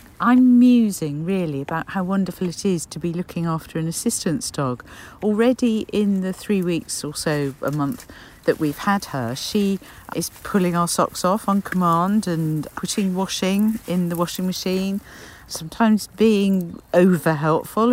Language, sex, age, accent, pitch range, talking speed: English, female, 50-69, British, 160-230 Hz, 155 wpm